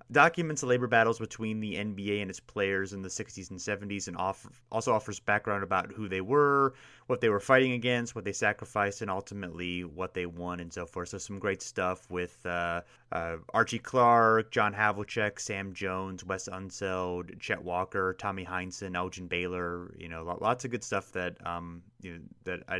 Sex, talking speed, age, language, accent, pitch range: male, 190 wpm, 30-49, English, American, 90-110 Hz